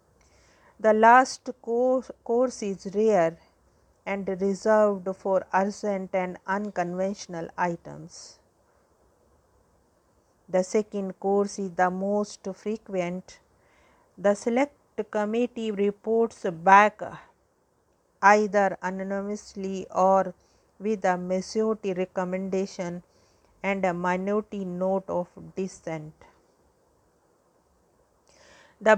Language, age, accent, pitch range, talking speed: English, 50-69, Indian, 185-210 Hz, 80 wpm